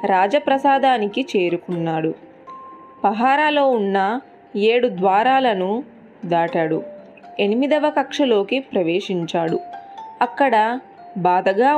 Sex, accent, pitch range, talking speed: female, native, 190-255 Hz, 60 wpm